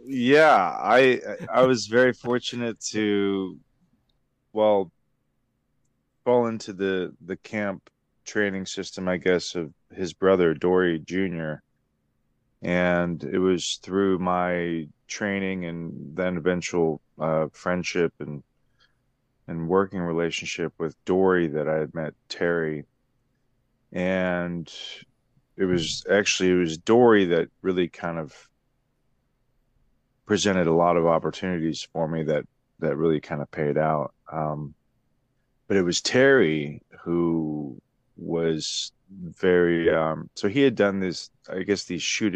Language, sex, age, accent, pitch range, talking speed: English, male, 30-49, American, 80-100 Hz, 125 wpm